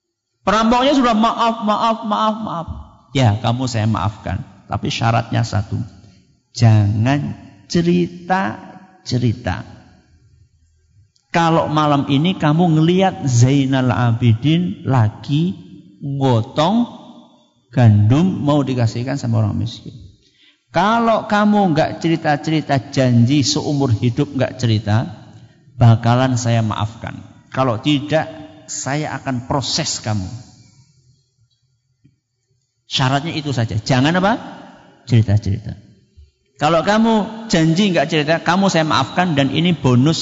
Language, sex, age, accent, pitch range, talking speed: Indonesian, male, 50-69, native, 115-160 Hz, 100 wpm